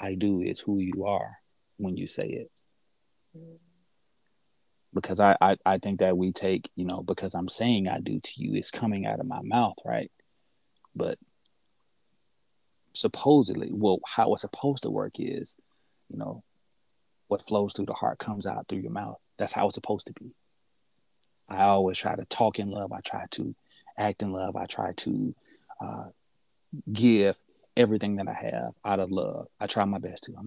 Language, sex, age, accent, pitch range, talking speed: English, male, 30-49, American, 95-105 Hz, 180 wpm